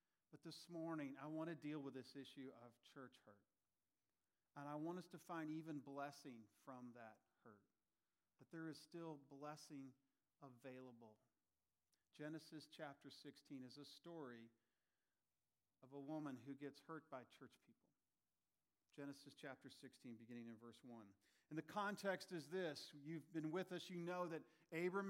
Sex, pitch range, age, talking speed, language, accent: male, 145-205 Hz, 40-59, 155 wpm, English, American